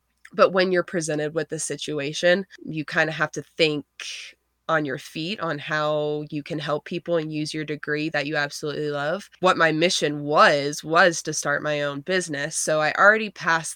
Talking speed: 190 wpm